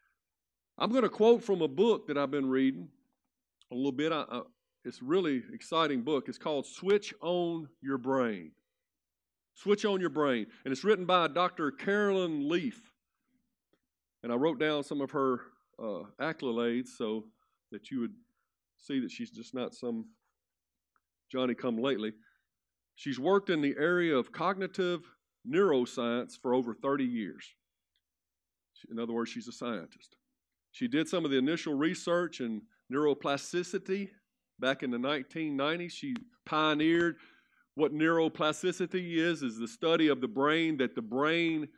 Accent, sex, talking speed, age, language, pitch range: American, male, 145 wpm, 50-69, English, 130-185 Hz